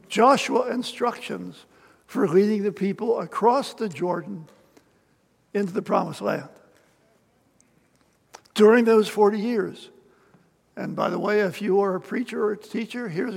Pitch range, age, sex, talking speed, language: 200-235 Hz, 60-79, male, 135 wpm, English